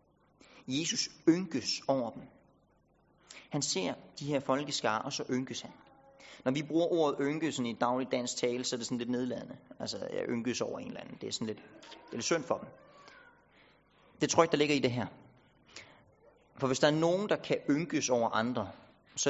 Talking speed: 195 wpm